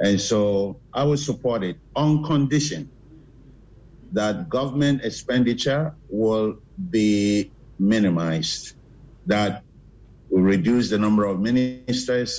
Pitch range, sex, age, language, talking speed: 105-140 Hz, male, 50-69, English, 100 wpm